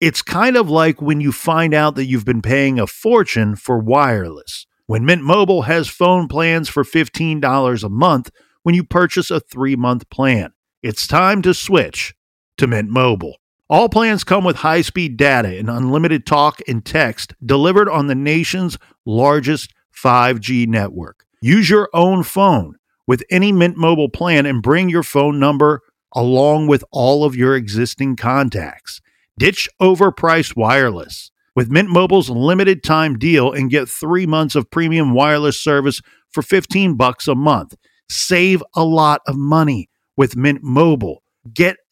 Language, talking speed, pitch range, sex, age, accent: English, 155 wpm, 130-175 Hz, male, 50-69, American